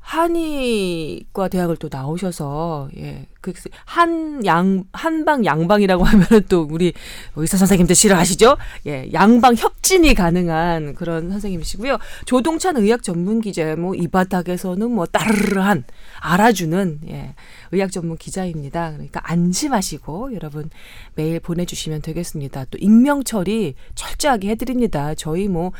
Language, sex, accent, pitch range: Korean, female, native, 165-235 Hz